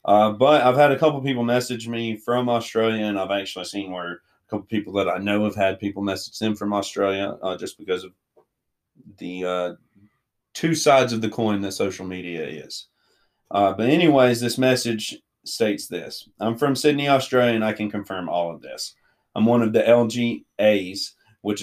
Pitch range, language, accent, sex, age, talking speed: 100-125 Hz, English, American, male, 30-49, 190 wpm